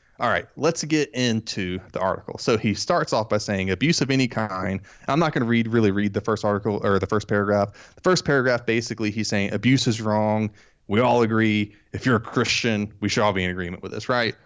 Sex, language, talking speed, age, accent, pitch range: male, English, 235 wpm, 20-39, American, 105-125 Hz